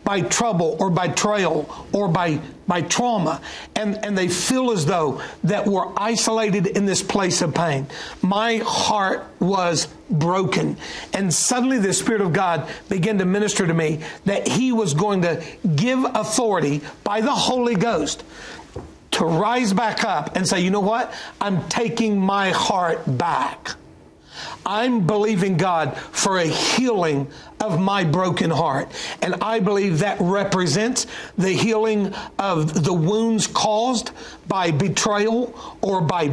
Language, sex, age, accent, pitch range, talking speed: English, male, 60-79, American, 180-225 Hz, 145 wpm